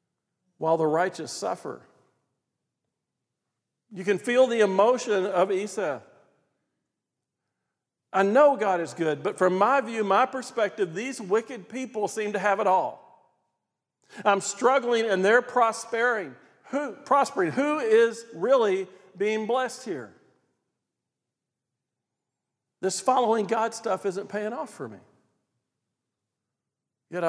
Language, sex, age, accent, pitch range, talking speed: English, male, 50-69, American, 175-230 Hz, 115 wpm